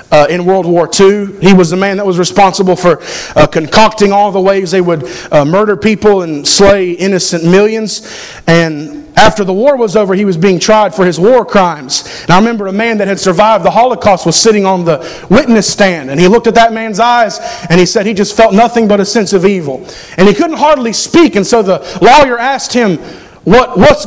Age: 40-59